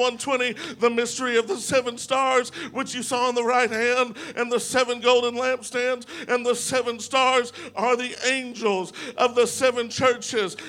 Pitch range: 240-275 Hz